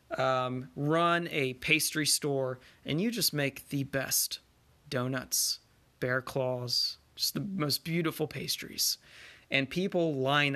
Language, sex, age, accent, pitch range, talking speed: English, male, 30-49, American, 130-165 Hz, 125 wpm